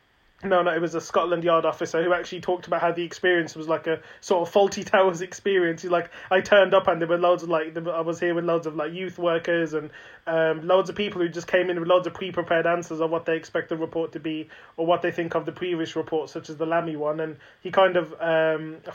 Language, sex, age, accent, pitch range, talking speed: English, male, 20-39, British, 165-190 Hz, 265 wpm